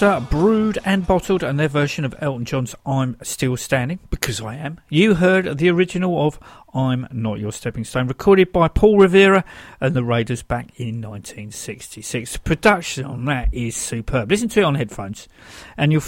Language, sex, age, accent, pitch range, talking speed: English, male, 50-69, British, 120-175 Hz, 175 wpm